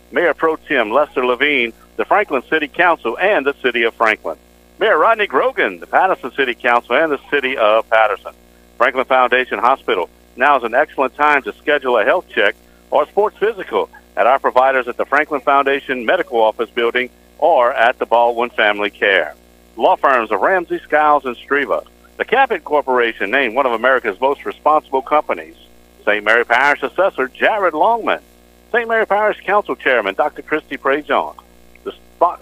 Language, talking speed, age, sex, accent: English, 165 wpm, 50-69, male, American